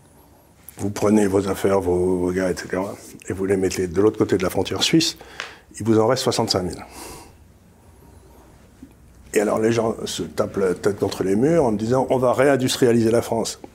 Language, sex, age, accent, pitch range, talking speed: French, male, 60-79, French, 95-130 Hz, 190 wpm